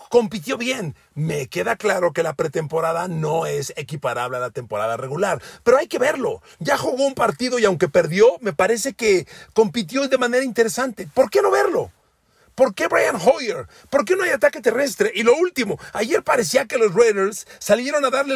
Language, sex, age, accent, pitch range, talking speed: Spanish, male, 40-59, Mexican, 165-230 Hz, 190 wpm